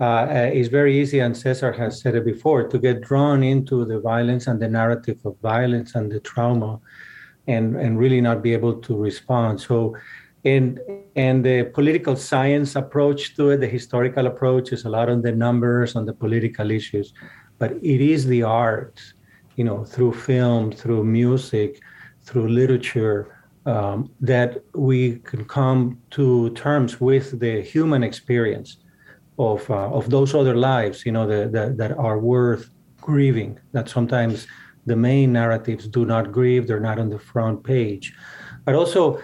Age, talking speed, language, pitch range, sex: 50-69, 165 wpm, English, 115-135 Hz, male